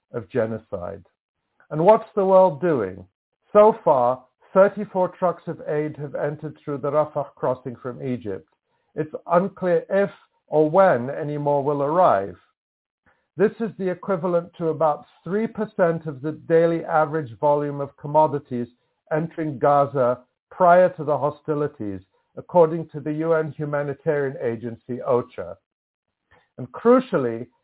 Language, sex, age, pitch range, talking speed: English, male, 60-79, 140-180 Hz, 130 wpm